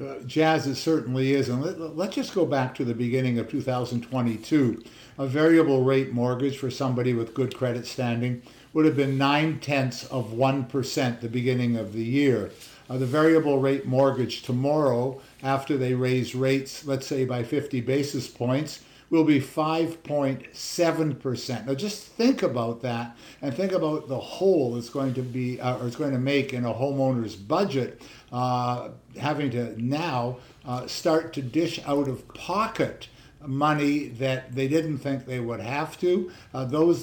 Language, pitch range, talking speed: English, 125-150 Hz, 165 wpm